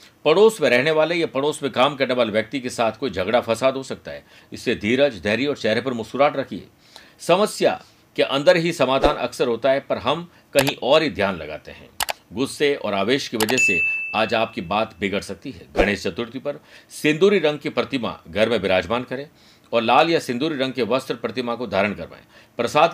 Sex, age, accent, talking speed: male, 50-69, native, 205 wpm